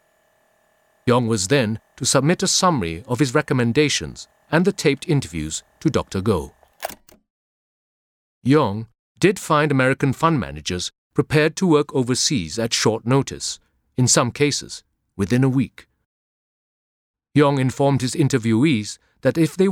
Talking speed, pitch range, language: 130 wpm, 100-155 Hz, English